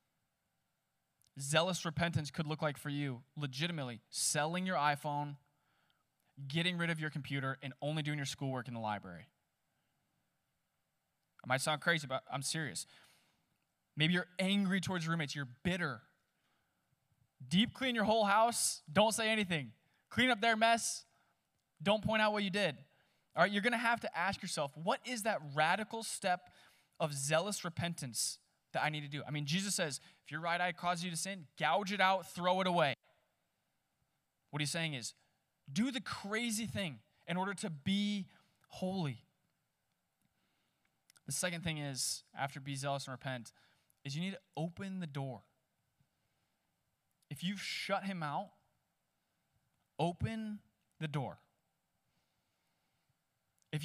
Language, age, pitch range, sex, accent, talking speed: English, 20-39, 145-190 Hz, male, American, 150 wpm